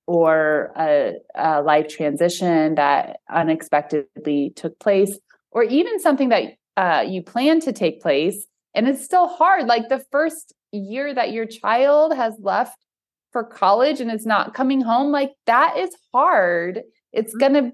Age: 20-39